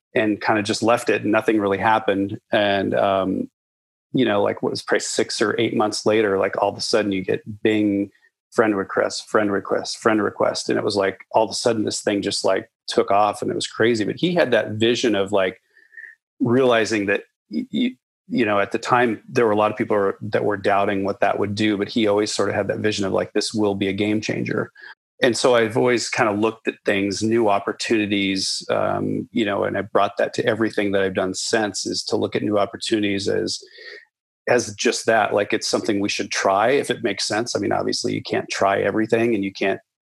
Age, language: 30-49, English